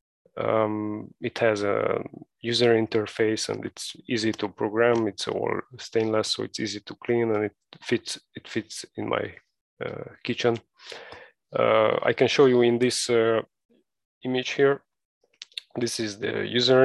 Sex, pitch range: male, 110-120 Hz